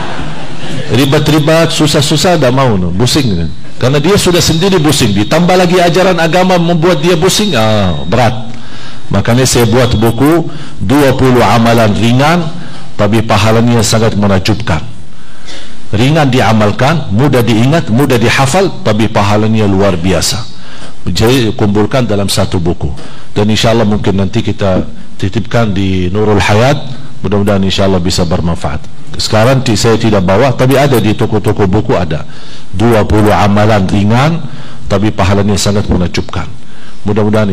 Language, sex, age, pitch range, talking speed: Indonesian, male, 50-69, 100-140 Hz, 125 wpm